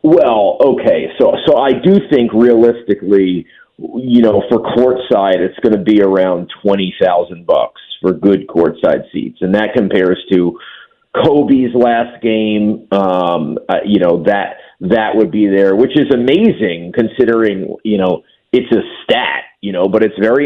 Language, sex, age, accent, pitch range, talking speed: English, male, 40-59, American, 105-150 Hz, 155 wpm